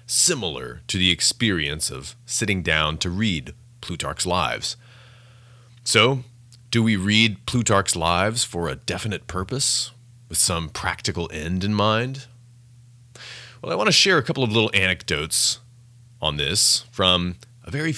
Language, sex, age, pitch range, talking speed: English, male, 30-49, 85-120 Hz, 140 wpm